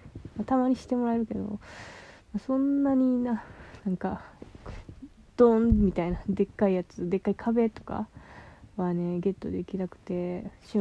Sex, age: female, 20-39